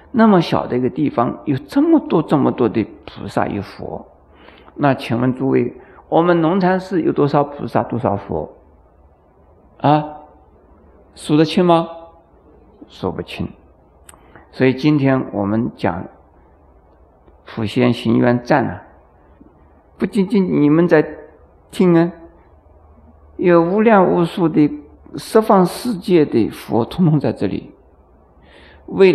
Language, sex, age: Chinese, male, 50-69